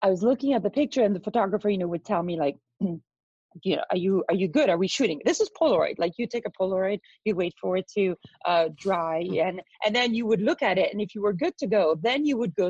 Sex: female